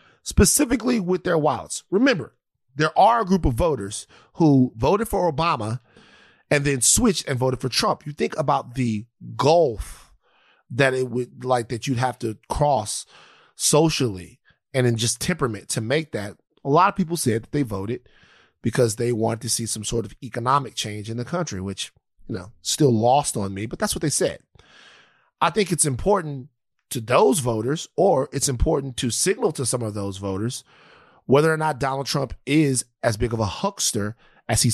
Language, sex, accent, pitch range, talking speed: English, male, American, 115-150 Hz, 185 wpm